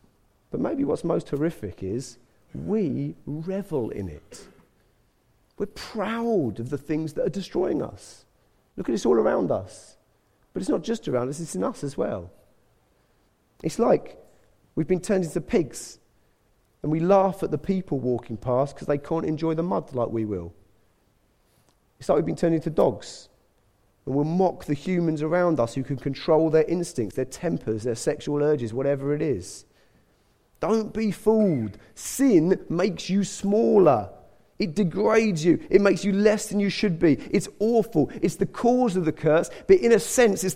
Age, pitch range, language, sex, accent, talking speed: 40-59, 135-205 Hz, English, male, British, 175 wpm